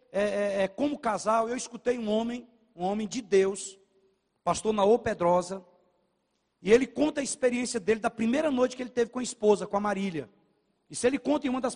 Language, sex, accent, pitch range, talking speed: Portuguese, male, Brazilian, 210-270 Hz, 190 wpm